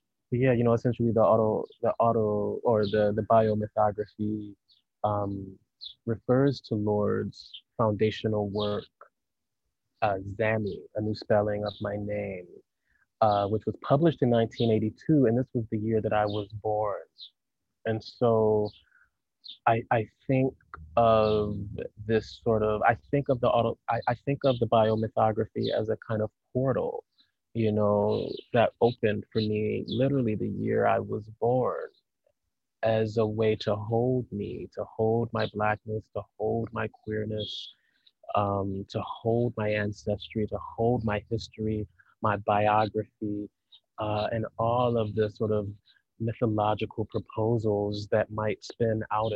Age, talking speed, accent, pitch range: 20-39, 140 wpm, American, 105-115 Hz